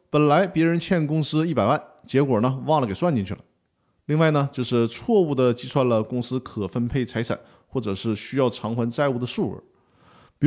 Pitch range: 120-180 Hz